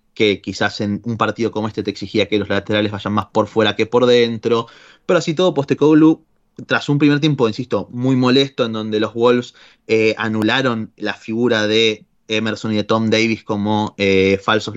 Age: 30-49